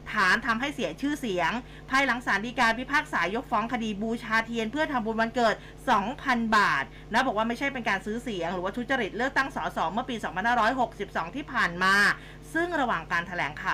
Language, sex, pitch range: Thai, female, 195-255 Hz